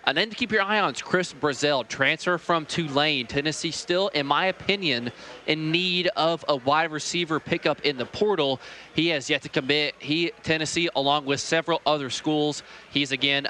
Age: 20-39